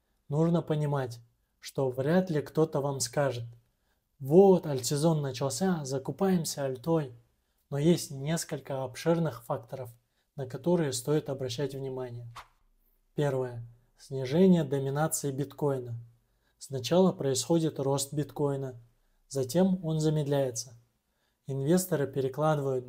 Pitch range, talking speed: 130-155 Hz, 95 wpm